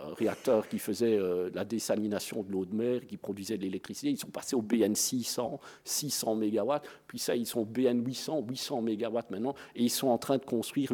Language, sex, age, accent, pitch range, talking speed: French, male, 50-69, French, 115-155 Hz, 210 wpm